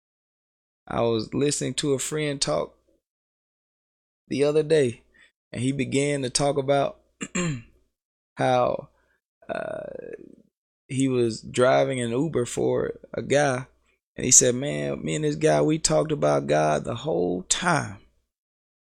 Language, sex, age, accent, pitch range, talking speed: English, male, 20-39, American, 115-170 Hz, 130 wpm